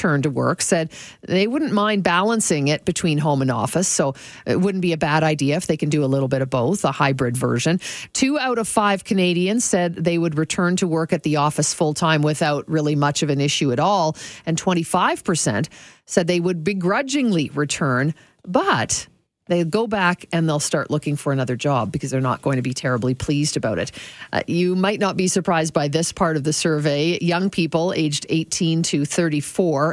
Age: 50-69